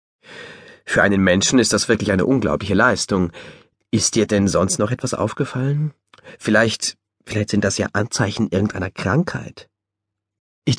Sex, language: male, German